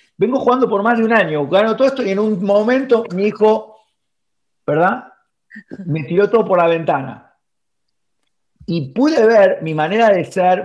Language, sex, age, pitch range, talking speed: Spanish, male, 40-59, 150-210 Hz, 170 wpm